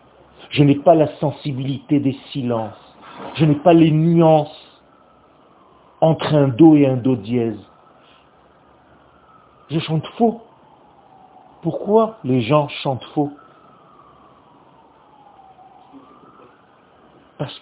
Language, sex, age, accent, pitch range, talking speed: French, male, 50-69, French, 145-205 Hz, 95 wpm